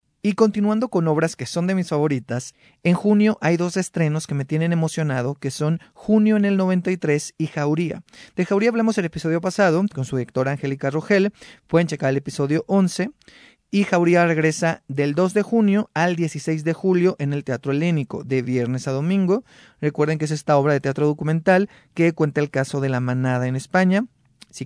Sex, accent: male, Mexican